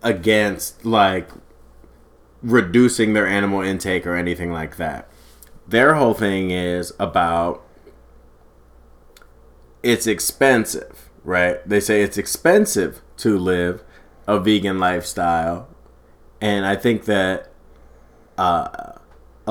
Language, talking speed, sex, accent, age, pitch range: English, 100 wpm, male, American, 30-49, 85-105 Hz